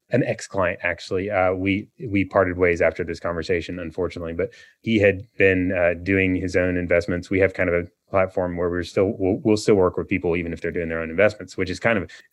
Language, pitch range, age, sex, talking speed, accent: English, 90-105 Hz, 30-49, male, 235 wpm, American